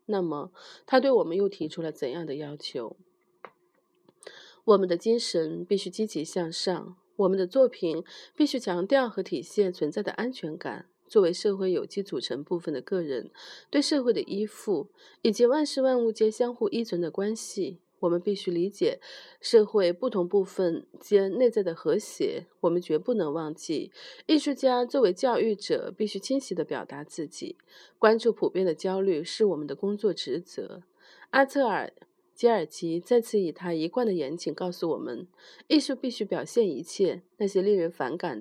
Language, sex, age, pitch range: Chinese, female, 30-49, 180-270 Hz